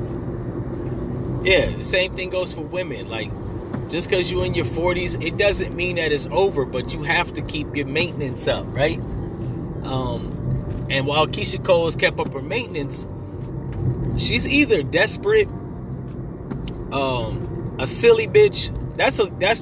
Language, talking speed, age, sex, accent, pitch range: English, 150 wpm, 30-49, male, American, 135-185 Hz